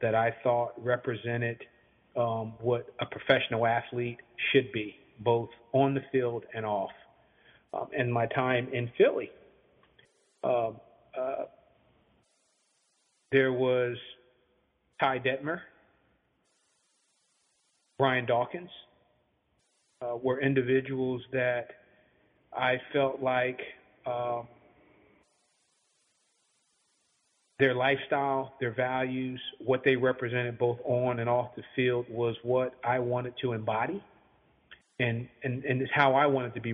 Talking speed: 110 wpm